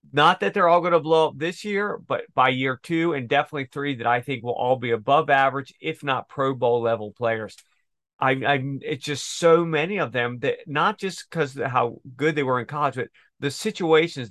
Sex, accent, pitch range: male, American, 125-155 Hz